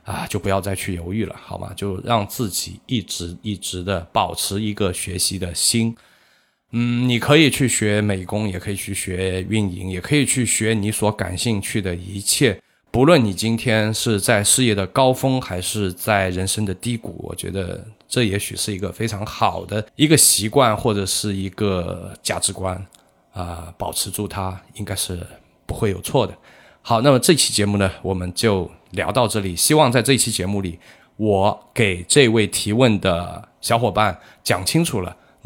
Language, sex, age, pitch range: Chinese, male, 20-39, 95-115 Hz